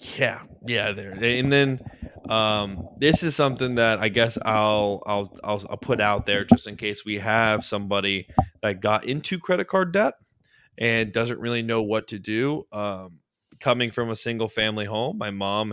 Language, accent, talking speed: English, American, 180 wpm